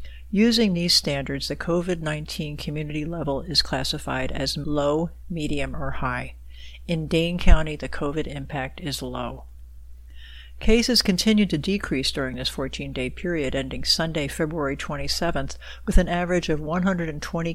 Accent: American